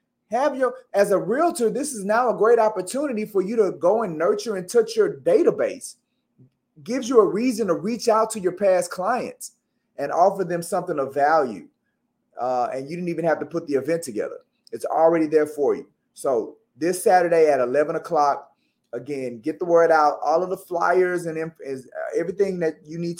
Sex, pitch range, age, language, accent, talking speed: male, 145-215 Hz, 30-49, English, American, 195 wpm